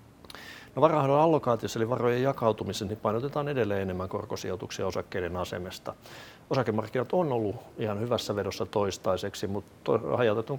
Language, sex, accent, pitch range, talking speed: Finnish, male, native, 95-120 Hz, 120 wpm